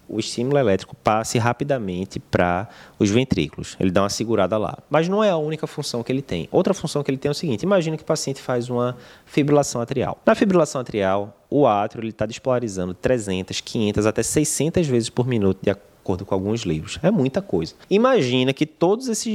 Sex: male